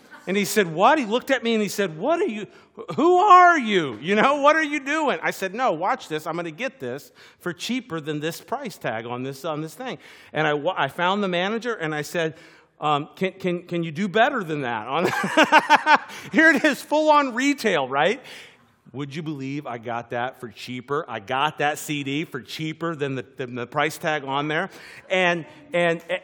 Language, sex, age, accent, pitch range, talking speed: English, male, 50-69, American, 165-260 Hz, 215 wpm